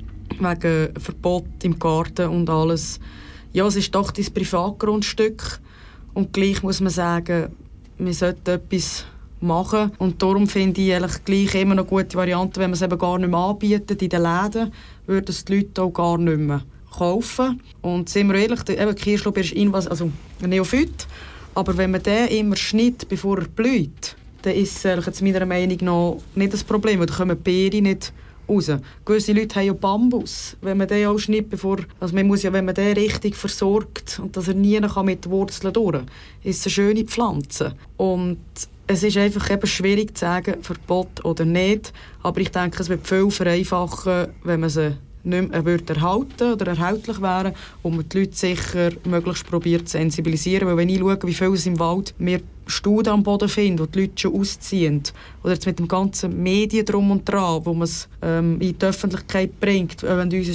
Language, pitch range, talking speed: German, 175-195 Hz, 190 wpm